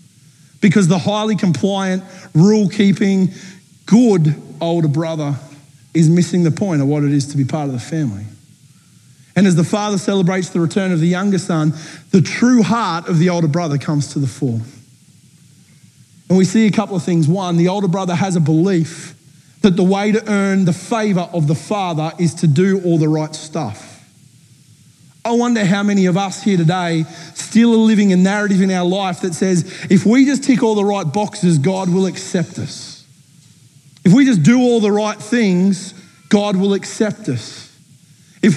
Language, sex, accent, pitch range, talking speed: English, male, Australian, 155-205 Hz, 185 wpm